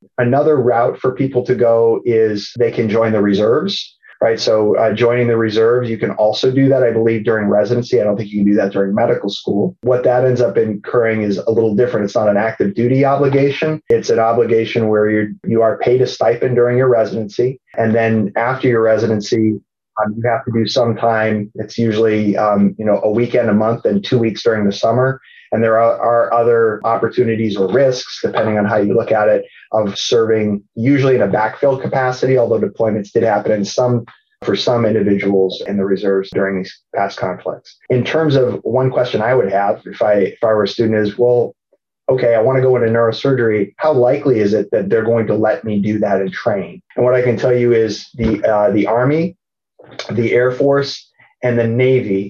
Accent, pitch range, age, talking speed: American, 105-125 Hz, 30-49, 210 wpm